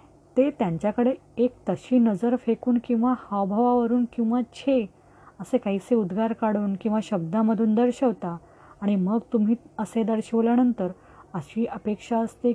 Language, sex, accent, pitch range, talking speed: Marathi, female, native, 200-255 Hz, 120 wpm